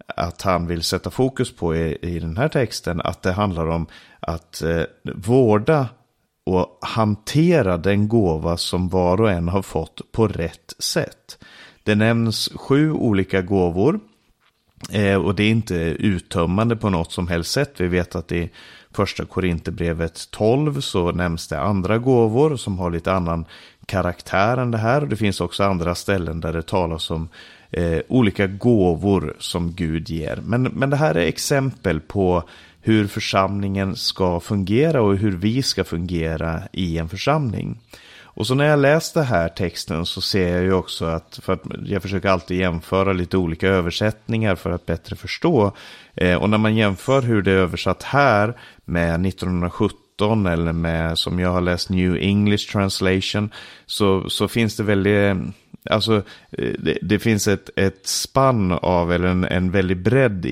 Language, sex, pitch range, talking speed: Swedish, male, 85-110 Hz, 165 wpm